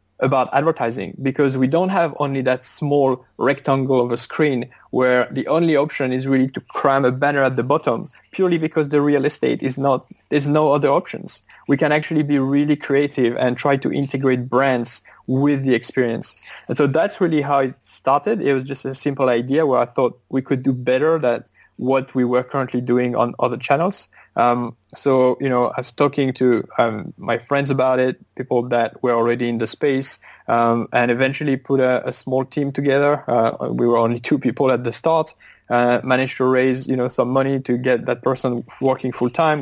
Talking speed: 200 wpm